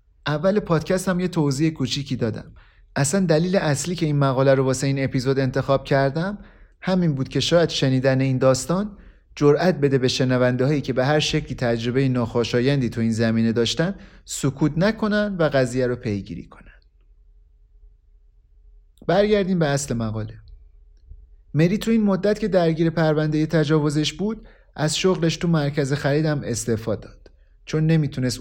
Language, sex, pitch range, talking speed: Persian, male, 115-160 Hz, 145 wpm